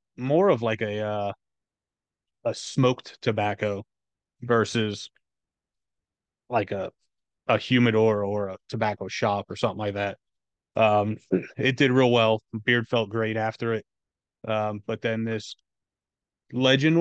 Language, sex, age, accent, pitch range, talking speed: English, male, 30-49, American, 105-120 Hz, 125 wpm